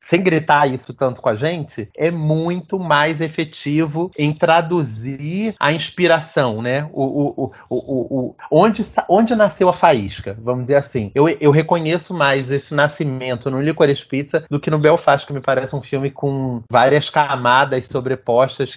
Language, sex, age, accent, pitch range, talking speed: Portuguese, male, 30-49, Brazilian, 130-165 Hz, 165 wpm